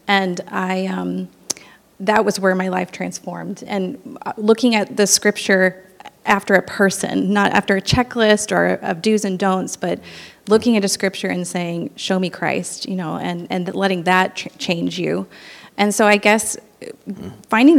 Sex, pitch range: female, 185-215 Hz